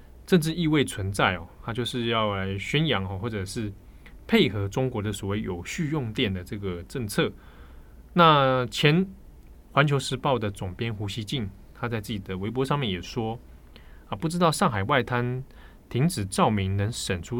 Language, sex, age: Chinese, male, 20-39